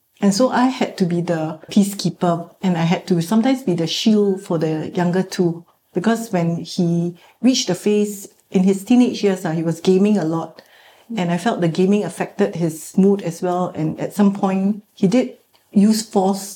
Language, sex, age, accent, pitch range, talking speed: English, female, 60-79, Malaysian, 170-210 Hz, 195 wpm